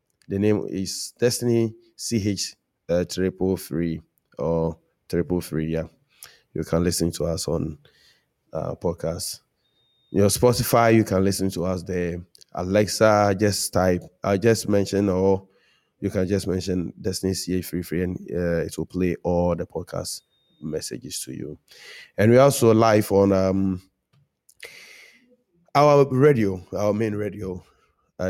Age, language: 20-39, English